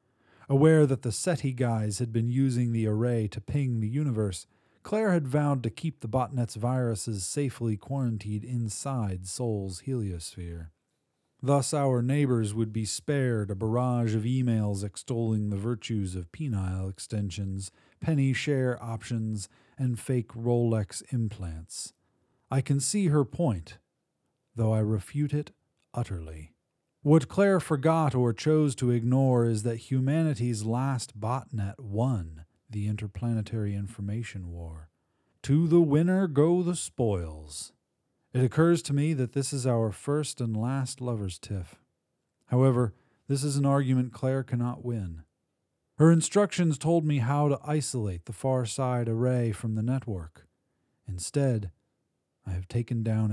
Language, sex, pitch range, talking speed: English, male, 105-135 Hz, 135 wpm